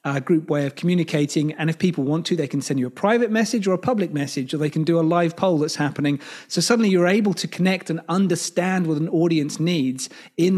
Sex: male